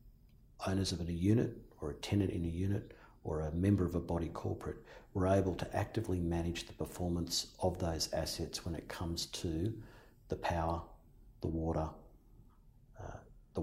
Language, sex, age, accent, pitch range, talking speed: English, male, 50-69, Australian, 85-105 Hz, 165 wpm